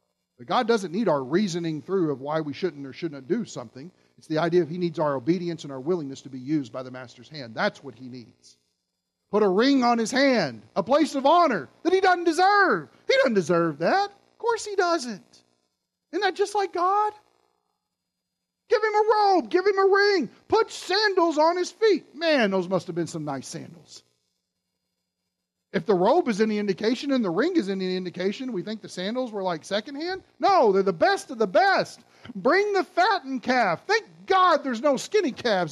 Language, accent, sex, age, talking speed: English, American, male, 40-59, 205 wpm